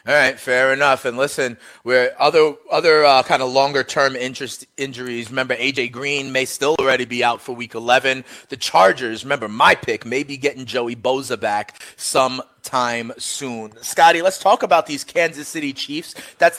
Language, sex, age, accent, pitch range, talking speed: English, male, 30-49, American, 130-170 Hz, 175 wpm